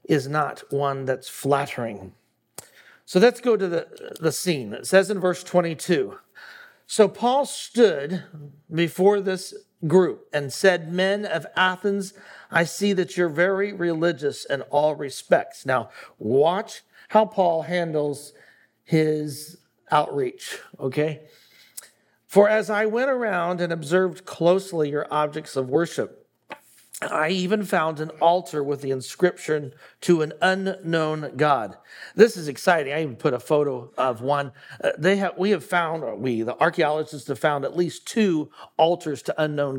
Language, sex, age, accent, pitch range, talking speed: English, male, 50-69, American, 145-190 Hz, 145 wpm